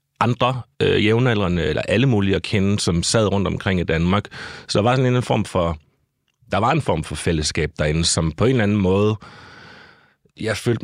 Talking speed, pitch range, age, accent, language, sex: 200 wpm, 90-115 Hz, 30-49, native, Danish, male